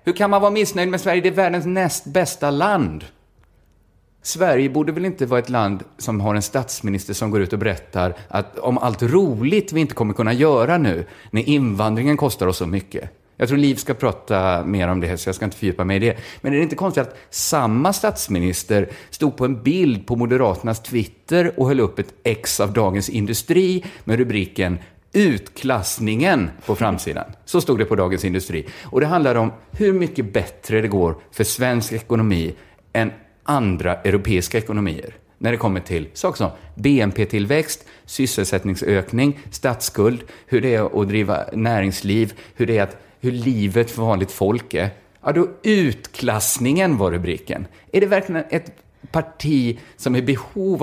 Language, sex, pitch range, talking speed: Swedish, male, 100-140 Hz, 175 wpm